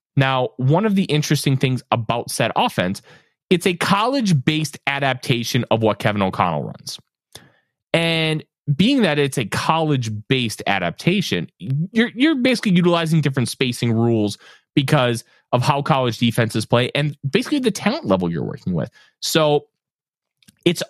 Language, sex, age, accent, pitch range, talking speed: English, male, 30-49, American, 120-165 Hz, 145 wpm